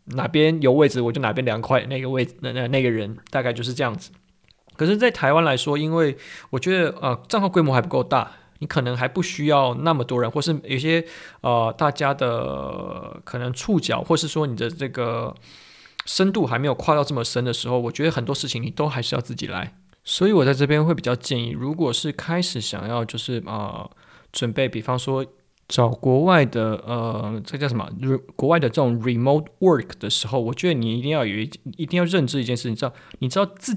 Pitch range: 120-155 Hz